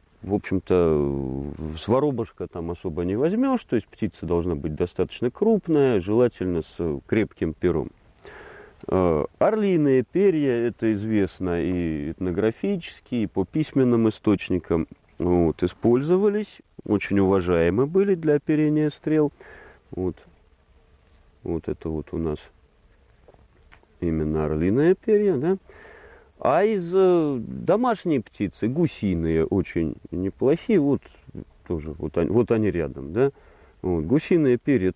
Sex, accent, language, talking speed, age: male, native, Russian, 105 wpm, 40-59